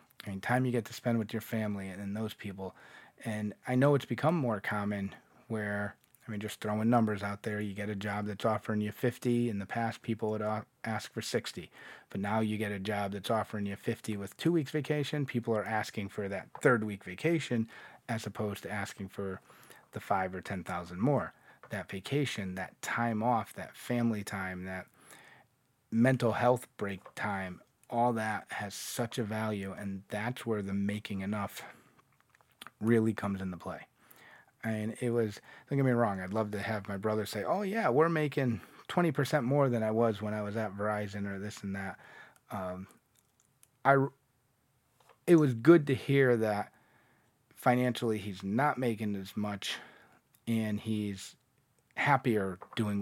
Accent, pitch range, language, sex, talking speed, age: American, 100-120 Hz, English, male, 175 wpm, 30-49